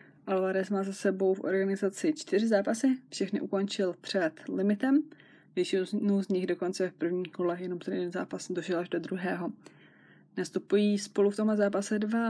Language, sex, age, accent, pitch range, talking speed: Czech, female, 20-39, native, 190-210 Hz, 160 wpm